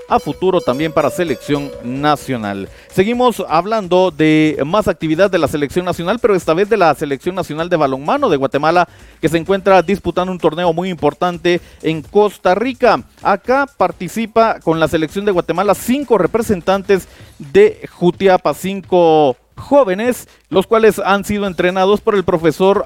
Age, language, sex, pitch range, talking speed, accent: 40-59, Spanish, male, 155-210 Hz, 150 wpm, Mexican